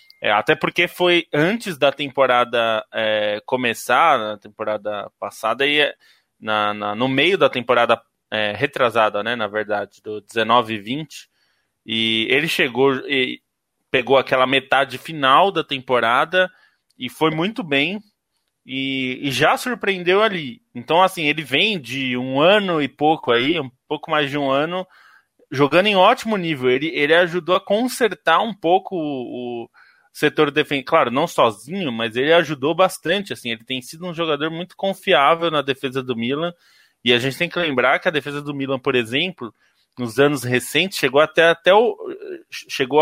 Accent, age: Brazilian, 20-39